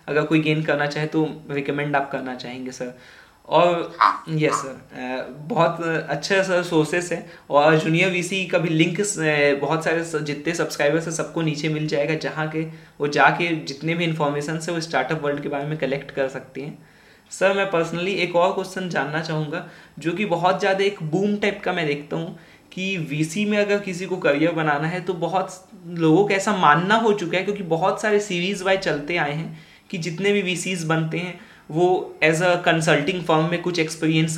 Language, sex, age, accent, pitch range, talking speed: Hindi, male, 20-39, native, 150-185 Hz, 195 wpm